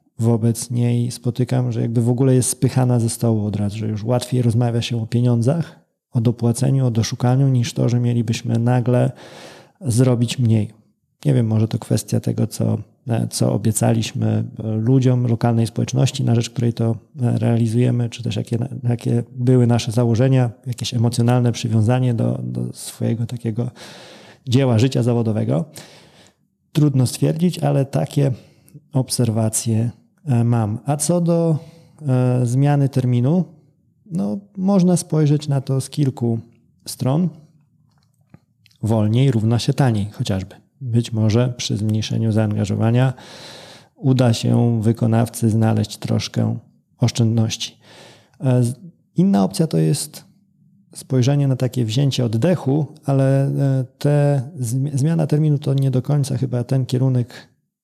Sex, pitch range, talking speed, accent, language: male, 115-140 Hz, 125 wpm, native, Polish